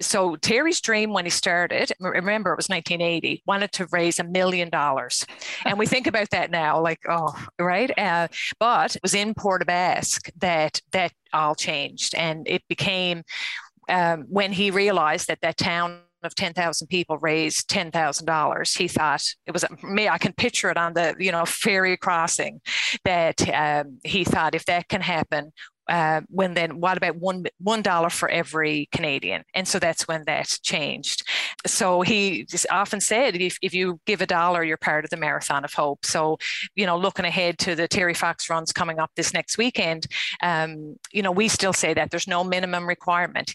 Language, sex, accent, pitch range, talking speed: English, female, American, 160-185 Hz, 185 wpm